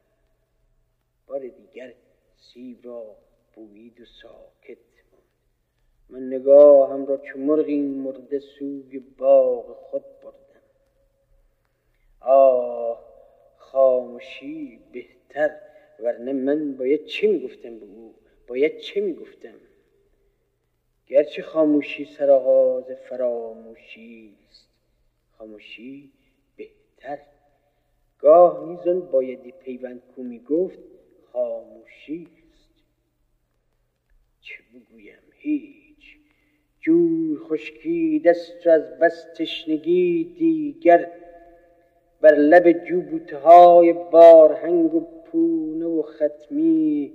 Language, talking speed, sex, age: Persian, 75 wpm, male, 40-59